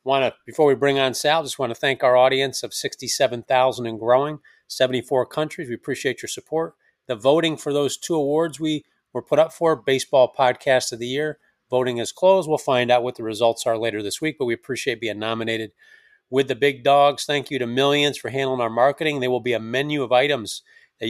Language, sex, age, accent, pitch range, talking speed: English, male, 40-59, American, 115-140 Hz, 220 wpm